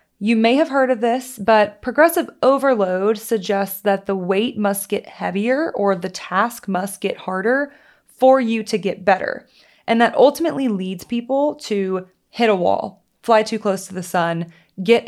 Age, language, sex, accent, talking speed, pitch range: 20-39, English, female, American, 170 wpm, 180-230 Hz